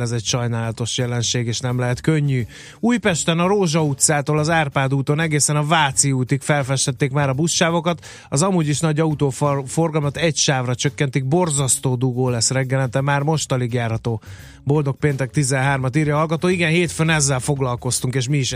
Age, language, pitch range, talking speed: 30-49, Hungarian, 125-155 Hz, 170 wpm